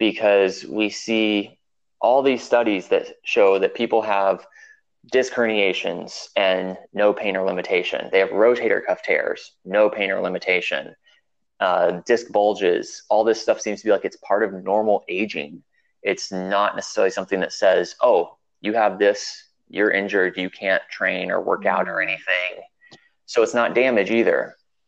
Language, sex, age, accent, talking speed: English, male, 20-39, American, 160 wpm